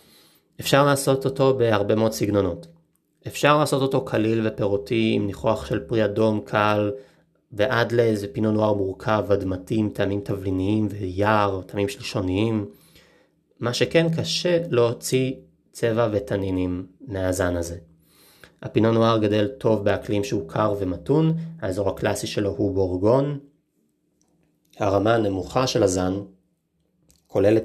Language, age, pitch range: Hebrew, 30-49, 100-130 Hz